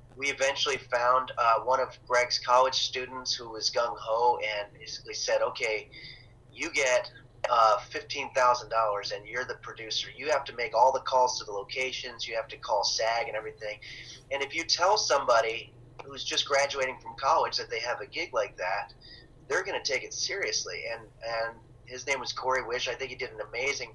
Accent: American